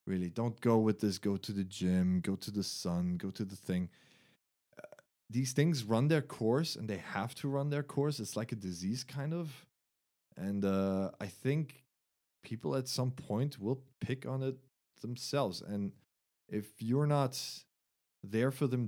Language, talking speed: English, 180 wpm